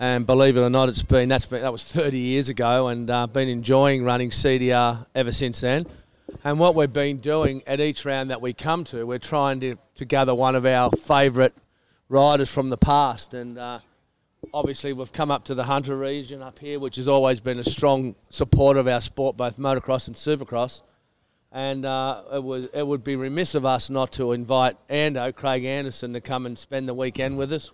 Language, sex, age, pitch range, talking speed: English, male, 40-59, 125-140 Hz, 215 wpm